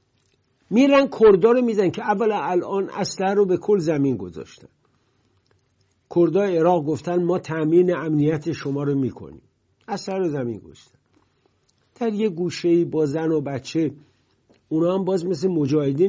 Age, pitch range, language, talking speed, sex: 60-79, 125-185 Hz, English, 140 wpm, male